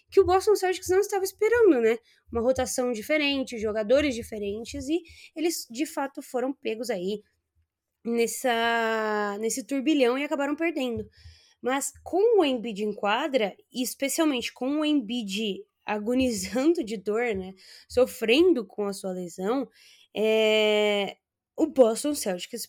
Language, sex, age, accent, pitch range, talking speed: Portuguese, female, 10-29, Brazilian, 225-325 Hz, 130 wpm